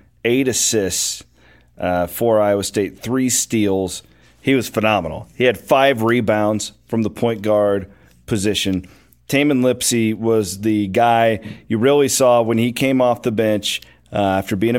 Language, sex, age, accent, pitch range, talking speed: English, male, 40-59, American, 95-115 Hz, 150 wpm